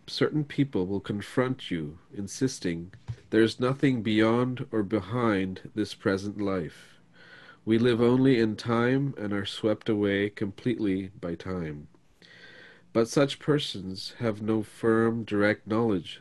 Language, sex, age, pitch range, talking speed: English, male, 40-59, 100-120 Hz, 125 wpm